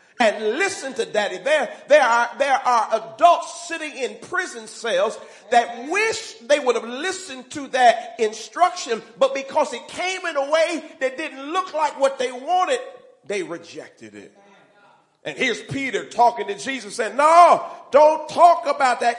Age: 40-59